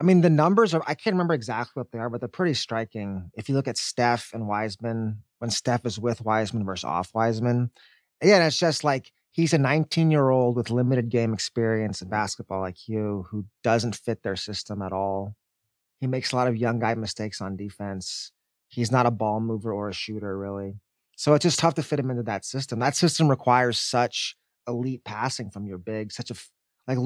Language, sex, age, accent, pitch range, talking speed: English, male, 20-39, American, 110-140 Hz, 210 wpm